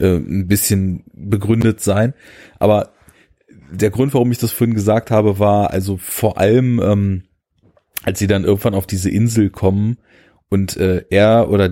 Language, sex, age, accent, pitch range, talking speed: German, male, 30-49, German, 100-115 Hz, 155 wpm